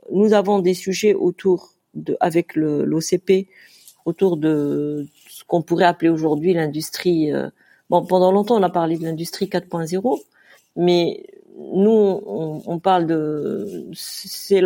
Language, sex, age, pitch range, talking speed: French, female, 50-69, 170-215 Hz, 135 wpm